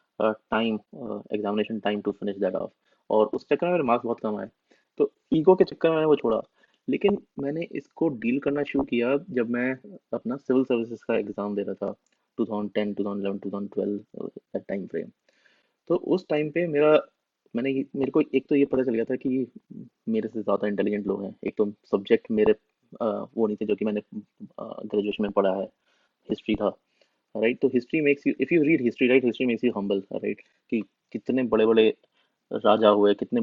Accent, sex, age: native, male, 20-39